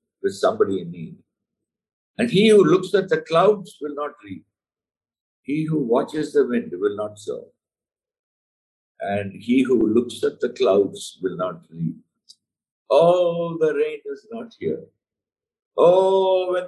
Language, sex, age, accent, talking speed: English, male, 50-69, Indian, 145 wpm